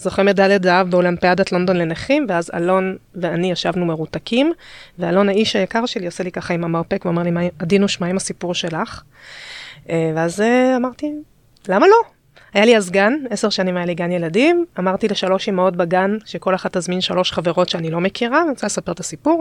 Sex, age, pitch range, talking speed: female, 20-39, 180-230 Hz, 190 wpm